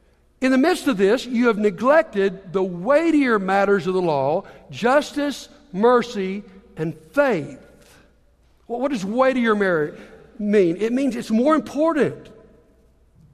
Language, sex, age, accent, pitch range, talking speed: English, male, 60-79, American, 195-260 Hz, 130 wpm